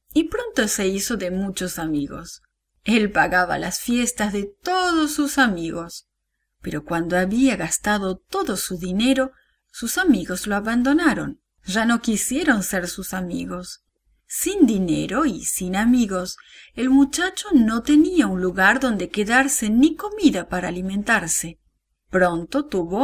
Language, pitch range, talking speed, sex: English, 190-275 Hz, 135 wpm, female